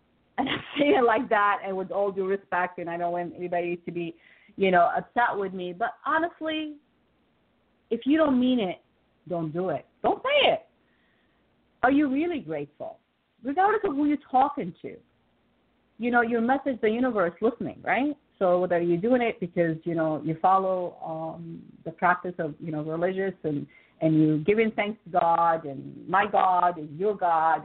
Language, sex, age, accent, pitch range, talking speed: English, female, 40-59, American, 165-245 Hz, 180 wpm